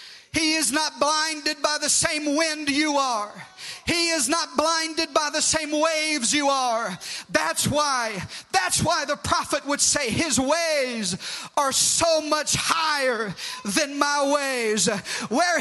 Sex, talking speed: male, 145 wpm